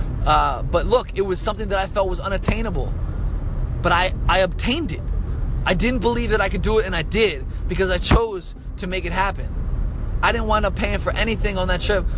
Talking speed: 215 wpm